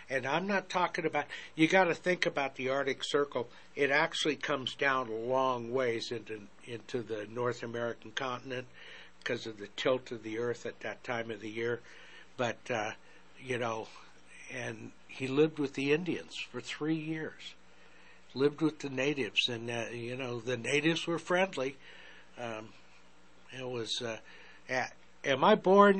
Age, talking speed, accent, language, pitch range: 60-79, 165 wpm, American, English, 120-155 Hz